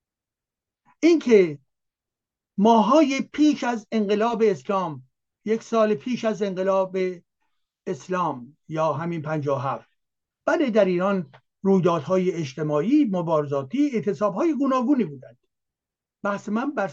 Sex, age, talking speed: male, 60-79, 95 wpm